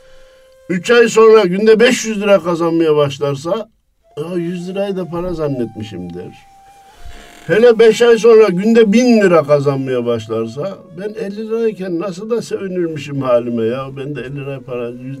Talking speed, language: 140 wpm, Turkish